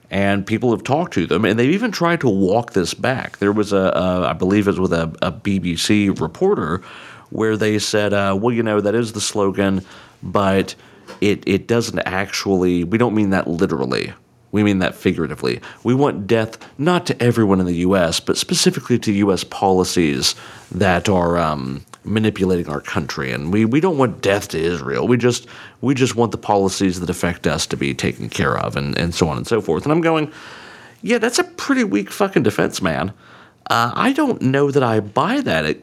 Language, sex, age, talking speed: English, male, 40-59, 200 wpm